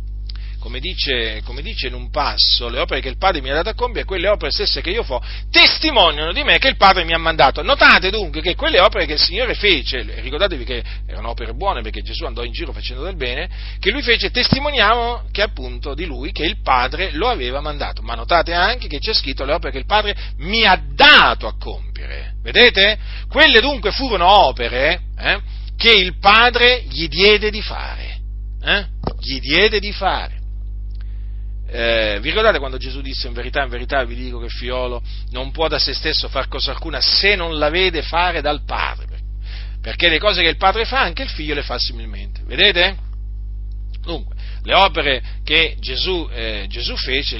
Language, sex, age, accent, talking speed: Italian, male, 40-59, native, 195 wpm